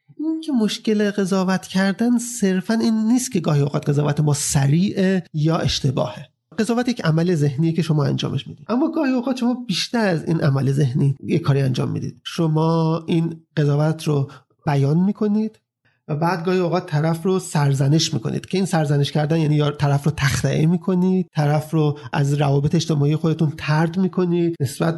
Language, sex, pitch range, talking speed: Persian, male, 150-195 Hz, 165 wpm